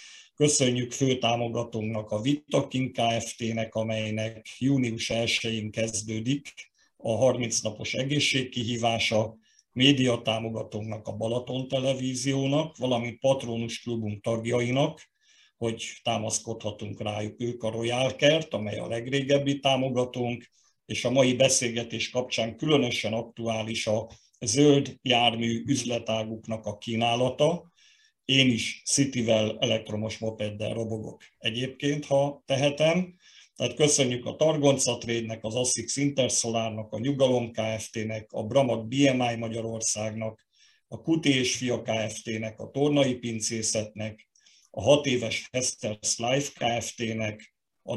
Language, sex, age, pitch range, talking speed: Hungarian, male, 50-69, 110-135 Hz, 105 wpm